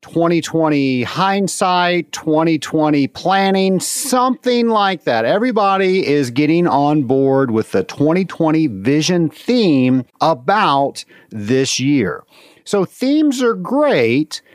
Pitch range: 135-195 Hz